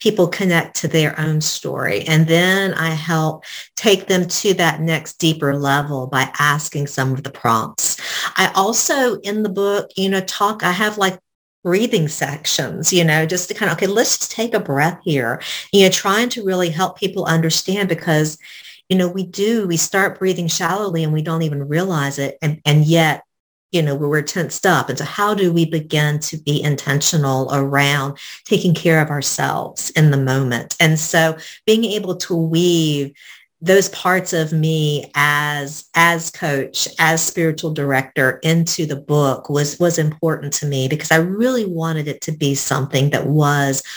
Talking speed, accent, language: 180 wpm, American, English